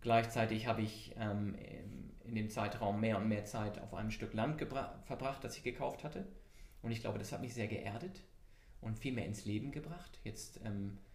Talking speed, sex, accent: 200 wpm, male, German